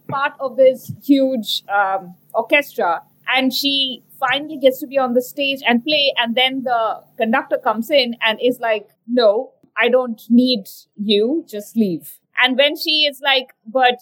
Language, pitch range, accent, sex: English, 240-300 Hz, Indian, female